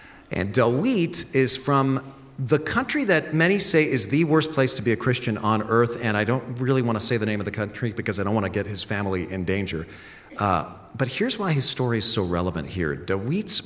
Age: 40-59